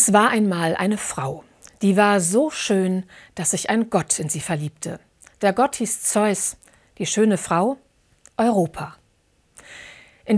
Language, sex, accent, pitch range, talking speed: German, female, German, 180-225 Hz, 145 wpm